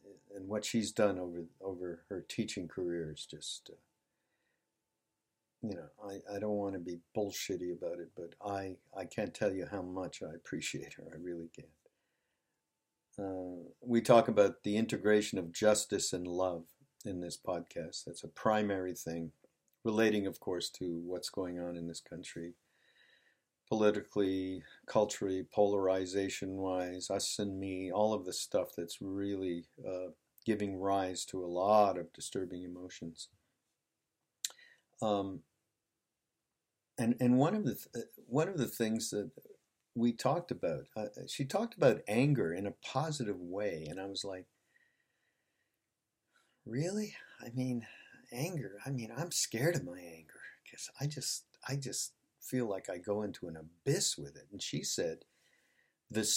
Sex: male